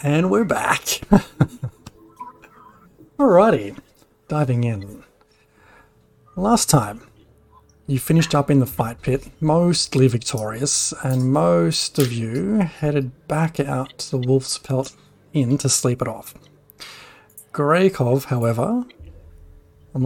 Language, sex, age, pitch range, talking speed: English, male, 40-59, 120-155 Hz, 110 wpm